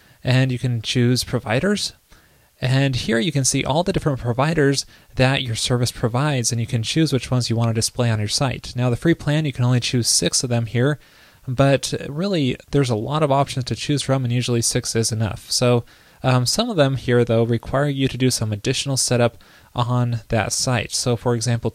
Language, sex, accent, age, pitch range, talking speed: English, male, American, 20-39, 115-140 Hz, 215 wpm